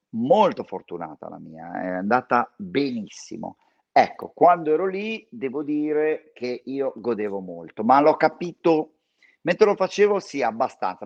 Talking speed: 135 wpm